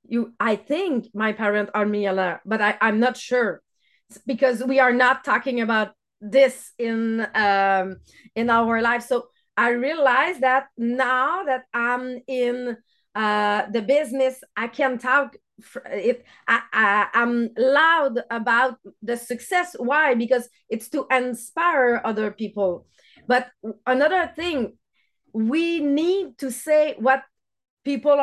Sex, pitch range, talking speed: female, 235-290 Hz, 135 wpm